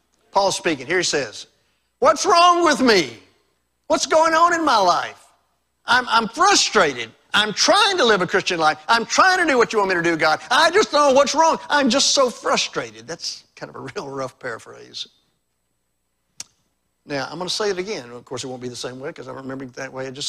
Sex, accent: male, American